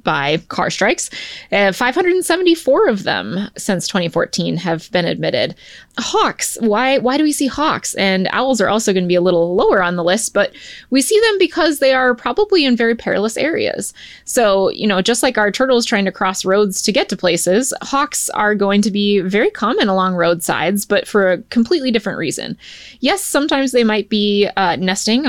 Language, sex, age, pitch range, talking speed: English, female, 20-39, 190-245 Hz, 190 wpm